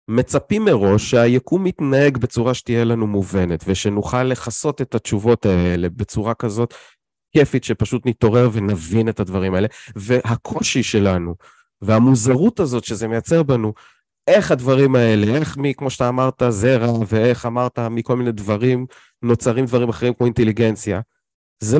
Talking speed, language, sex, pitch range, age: 130 wpm, Hebrew, male, 115-145 Hz, 30-49